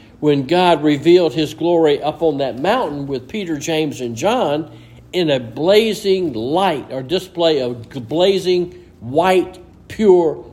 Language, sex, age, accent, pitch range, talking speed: English, male, 60-79, American, 140-210 Hz, 135 wpm